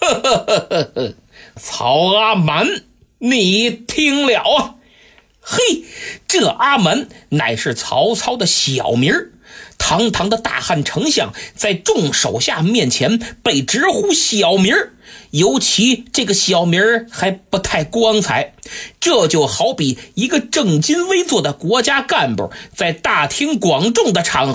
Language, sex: Chinese, male